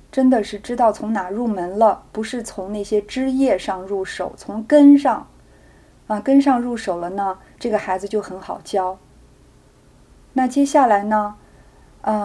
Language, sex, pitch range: Chinese, female, 200-245 Hz